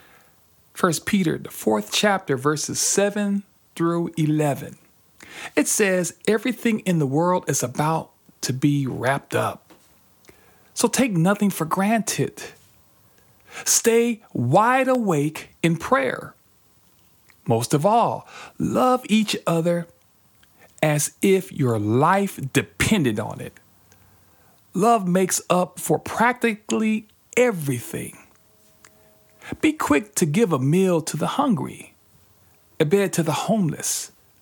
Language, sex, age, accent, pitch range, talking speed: English, male, 50-69, American, 140-205 Hz, 110 wpm